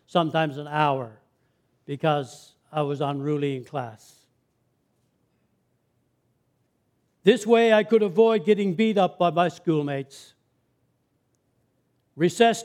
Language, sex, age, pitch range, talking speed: English, male, 60-79, 140-200 Hz, 100 wpm